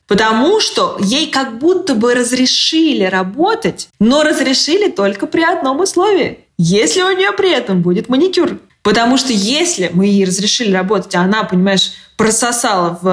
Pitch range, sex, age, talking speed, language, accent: 190-255 Hz, female, 20-39, 145 wpm, Russian, native